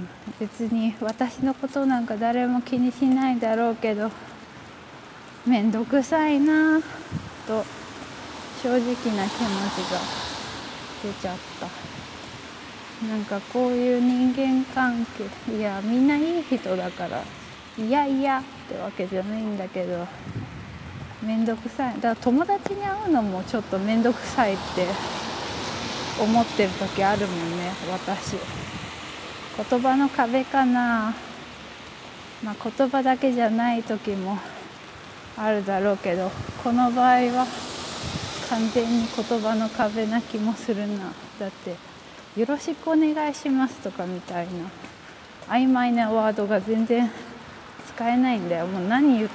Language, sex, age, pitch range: English, female, 20-39, 205-250 Hz